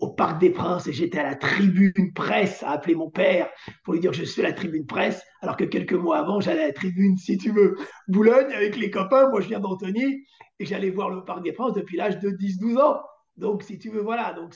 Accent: French